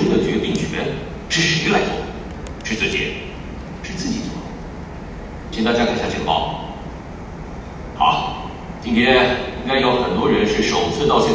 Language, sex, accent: Chinese, male, native